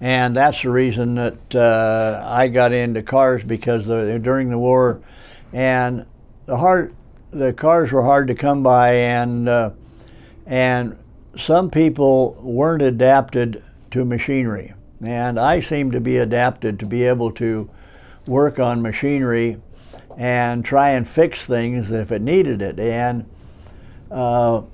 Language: English